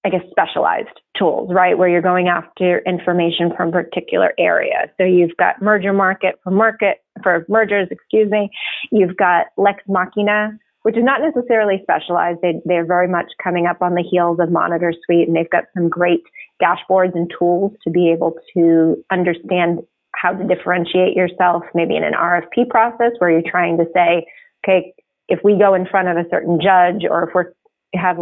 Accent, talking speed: American, 185 wpm